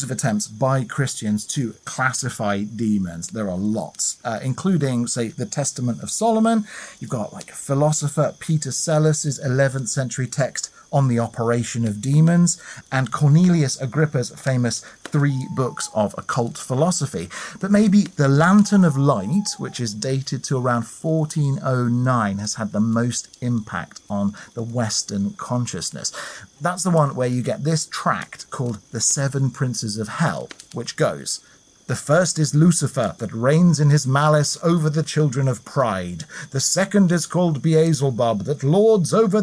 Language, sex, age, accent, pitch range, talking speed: English, male, 40-59, British, 120-160 Hz, 150 wpm